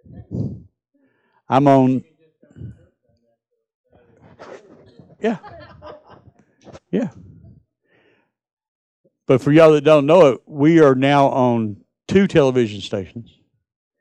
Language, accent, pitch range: English, American, 115-150 Hz